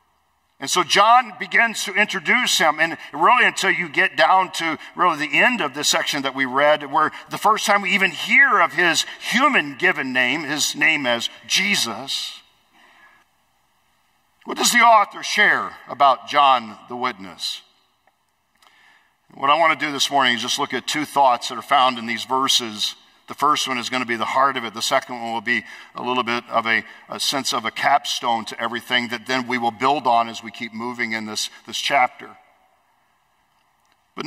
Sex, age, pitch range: male, 50-69, 125-180 Hz